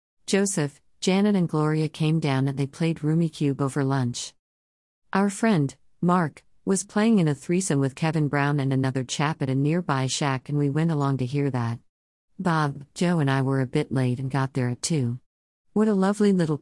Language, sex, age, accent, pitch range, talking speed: English, female, 50-69, American, 130-160 Hz, 200 wpm